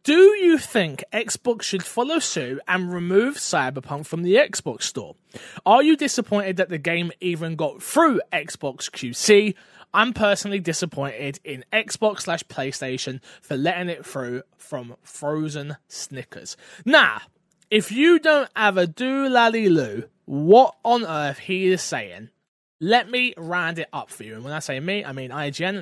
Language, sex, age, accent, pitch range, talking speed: English, male, 20-39, British, 150-220 Hz, 155 wpm